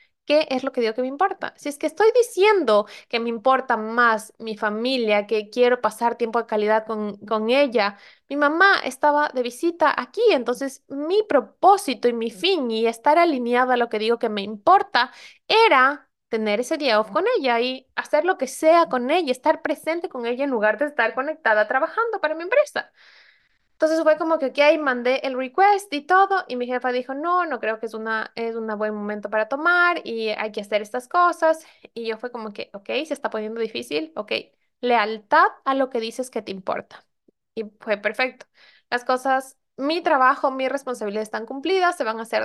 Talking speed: 200 wpm